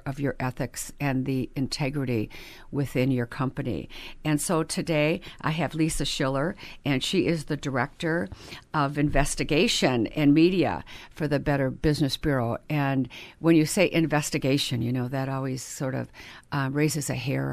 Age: 50-69